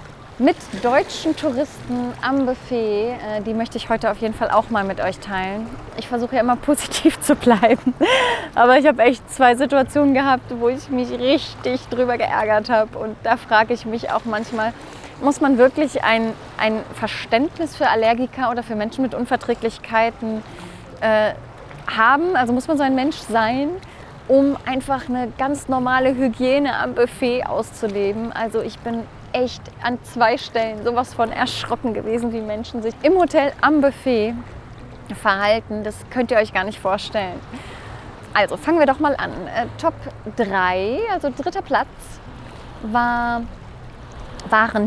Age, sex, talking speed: 20-39, female, 155 wpm